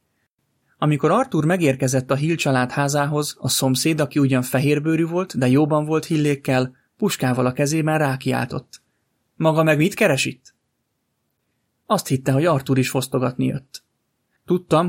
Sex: male